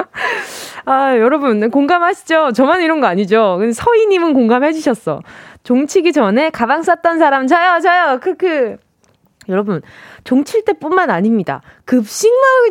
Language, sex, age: Korean, female, 20-39